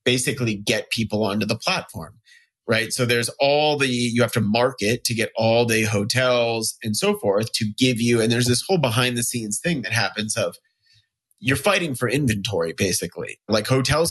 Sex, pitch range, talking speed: male, 110-125 Hz, 185 wpm